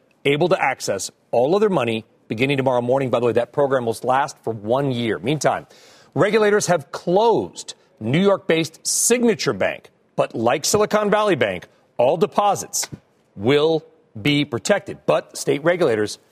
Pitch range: 130-185 Hz